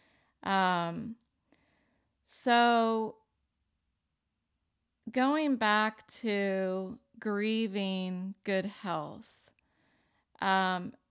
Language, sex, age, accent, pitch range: English, female, 40-59, American, 180-220 Hz